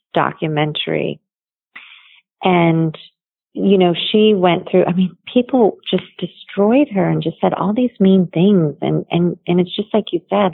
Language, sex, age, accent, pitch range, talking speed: English, female, 40-59, American, 160-190 Hz, 160 wpm